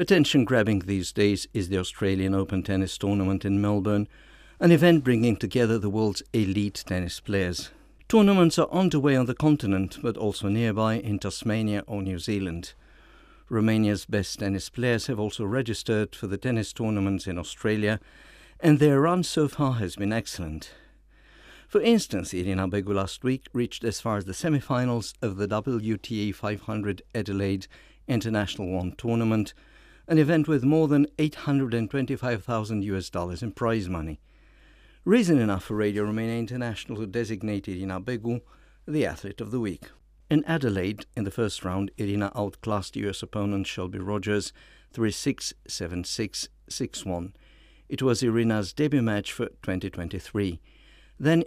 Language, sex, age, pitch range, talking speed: English, male, 60-79, 95-120 Hz, 145 wpm